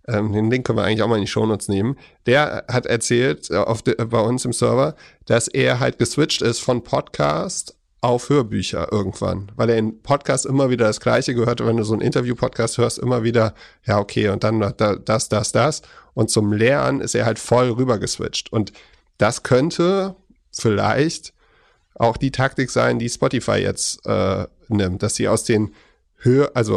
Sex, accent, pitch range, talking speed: male, German, 110-130 Hz, 185 wpm